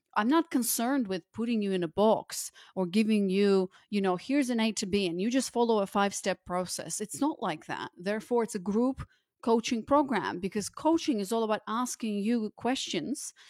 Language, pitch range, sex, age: English, 180-230 Hz, female, 30-49